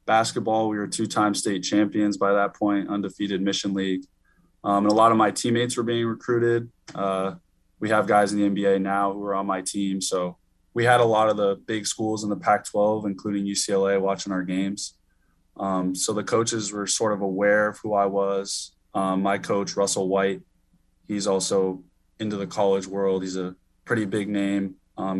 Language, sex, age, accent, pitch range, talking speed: English, male, 20-39, American, 95-105 Hz, 195 wpm